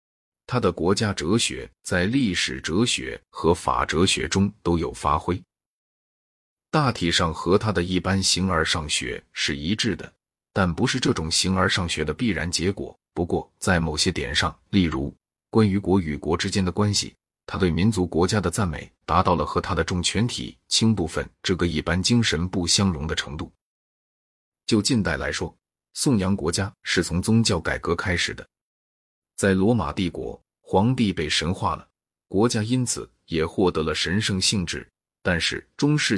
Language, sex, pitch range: Chinese, male, 80-105 Hz